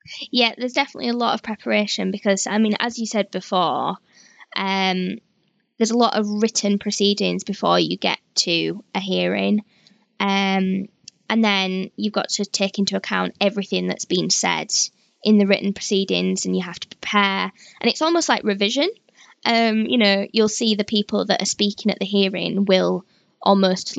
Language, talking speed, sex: English, 175 wpm, female